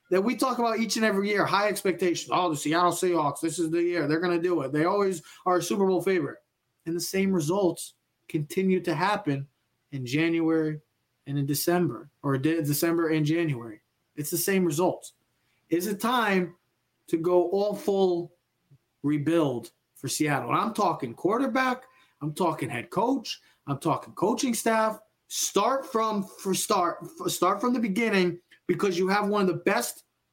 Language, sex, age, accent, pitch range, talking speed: English, male, 20-39, American, 150-205 Hz, 175 wpm